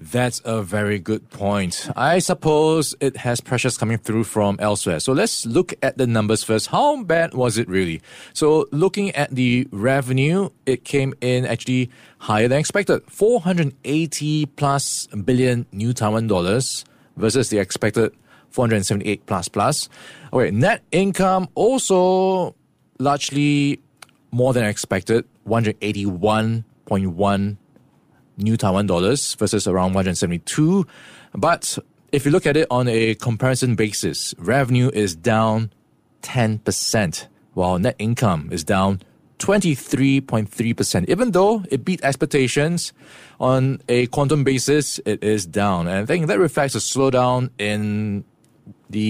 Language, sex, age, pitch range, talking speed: English, male, 20-39, 105-145 Hz, 130 wpm